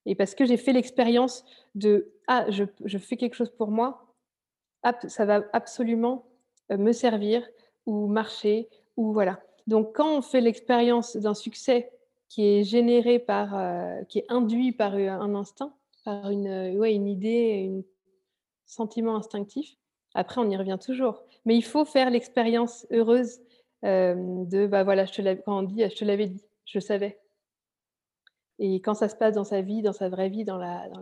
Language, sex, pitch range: French, female, 200-240 Hz